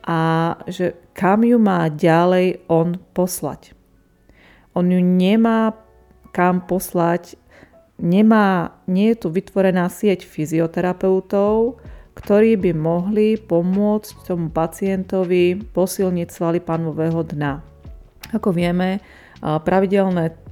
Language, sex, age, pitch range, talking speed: Slovak, female, 30-49, 165-195 Hz, 95 wpm